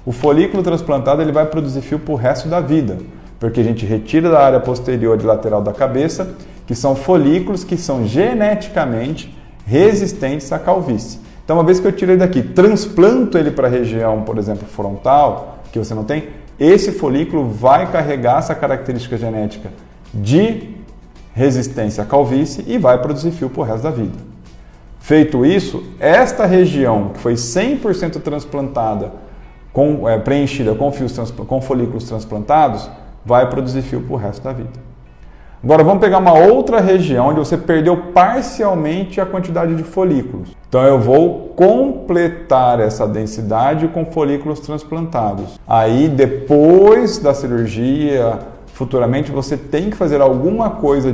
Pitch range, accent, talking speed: 115-165 Hz, Brazilian, 155 wpm